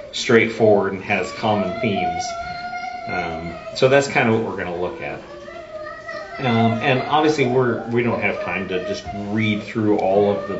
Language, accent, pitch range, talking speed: English, American, 105-130 Hz, 175 wpm